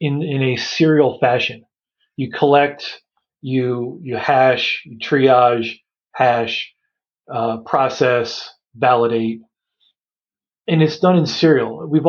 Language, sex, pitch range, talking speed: English, male, 120-155 Hz, 110 wpm